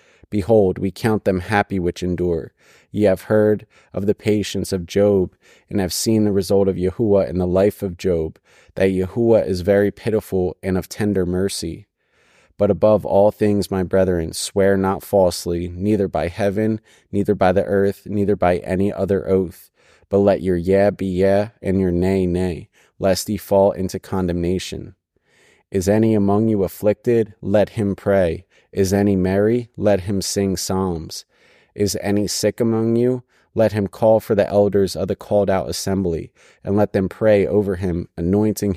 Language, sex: English, male